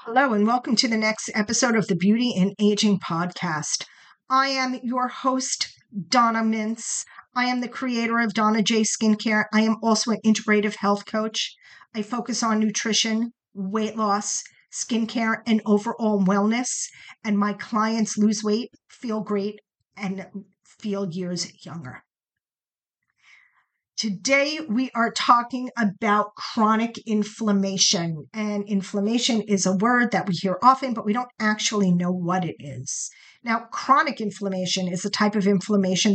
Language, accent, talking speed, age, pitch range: English, American, 145 wpm, 40-59, 200-230 Hz